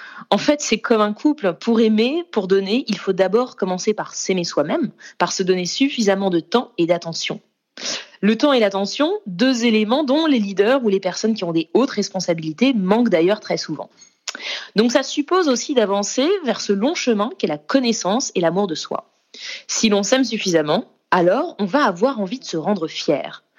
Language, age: French, 20-39